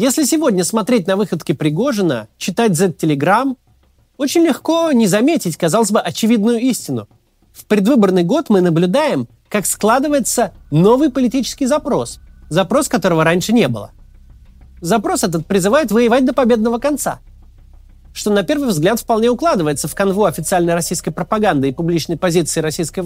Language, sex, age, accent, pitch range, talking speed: Russian, male, 30-49, native, 175-260 Hz, 140 wpm